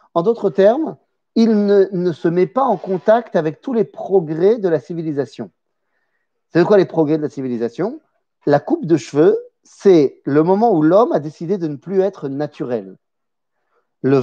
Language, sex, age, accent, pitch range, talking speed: French, male, 40-59, French, 150-230 Hz, 175 wpm